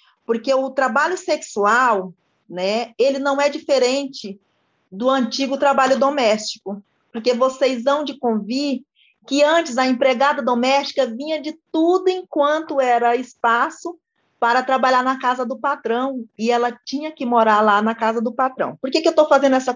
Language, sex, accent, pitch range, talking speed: Portuguese, female, Brazilian, 225-290 Hz, 160 wpm